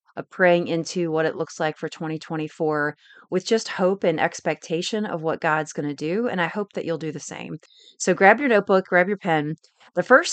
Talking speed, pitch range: 215 wpm, 155-180 Hz